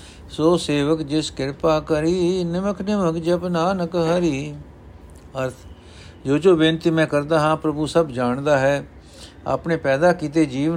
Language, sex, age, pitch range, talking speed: Punjabi, male, 60-79, 105-160 Hz, 145 wpm